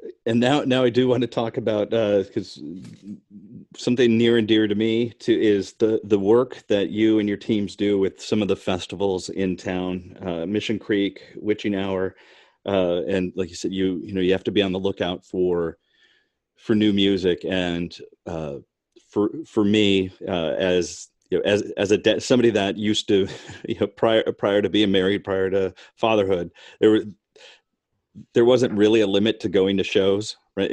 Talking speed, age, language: 190 wpm, 40-59, English